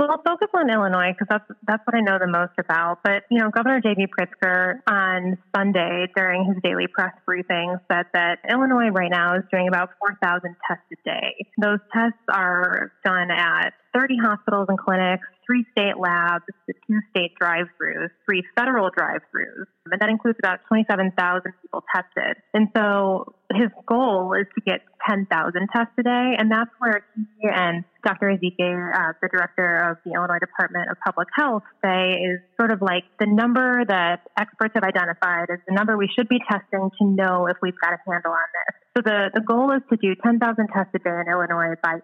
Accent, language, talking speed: American, English, 190 wpm